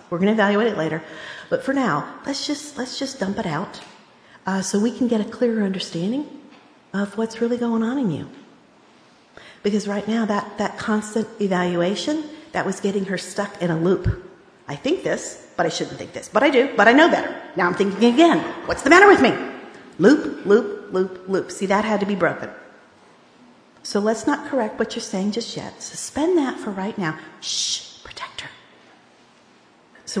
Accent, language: American, English